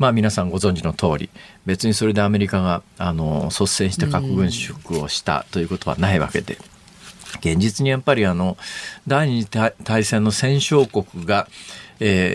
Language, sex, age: Japanese, male, 50-69